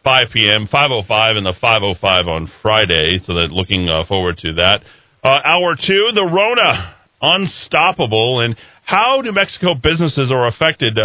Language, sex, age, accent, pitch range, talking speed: English, male, 40-59, American, 95-130 Hz, 145 wpm